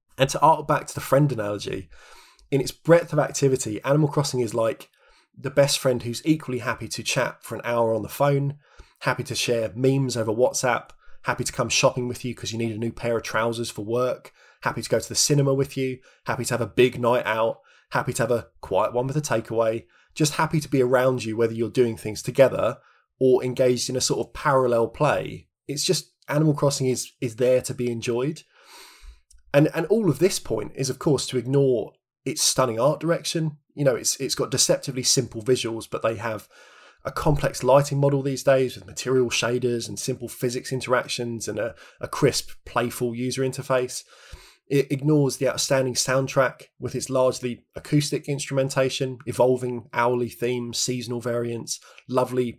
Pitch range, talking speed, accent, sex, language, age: 120-140 Hz, 190 wpm, British, male, English, 20-39